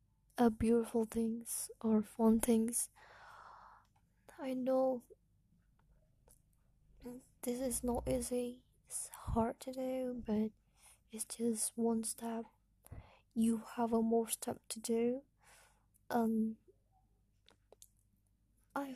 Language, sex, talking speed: Indonesian, female, 90 wpm